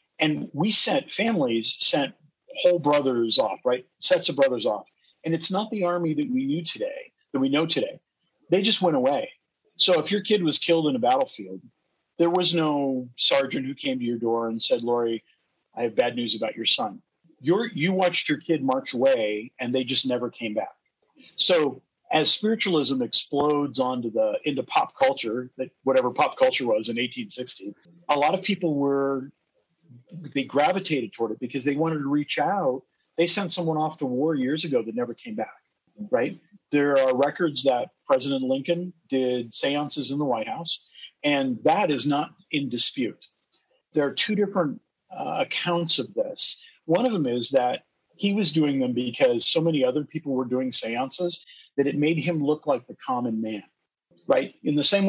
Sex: male